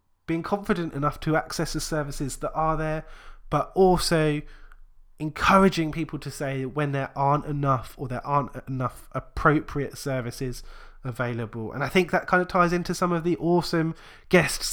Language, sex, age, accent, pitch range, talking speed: English, male, 20-39, British, 135-160 Hz, 165 wpm